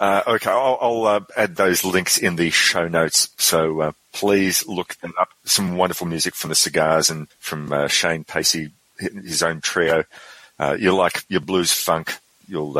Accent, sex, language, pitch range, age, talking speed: Australian, male, English, 90-115 Hz, 40-59, 185 wpm